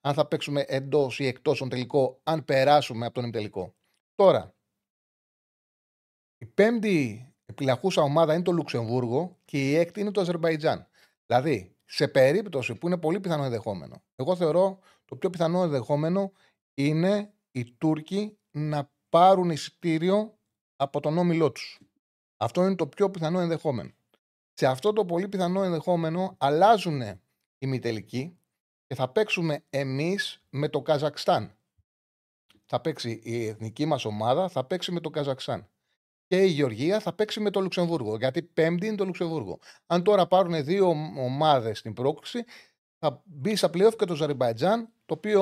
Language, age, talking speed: Greek, 30-49, 150 wpm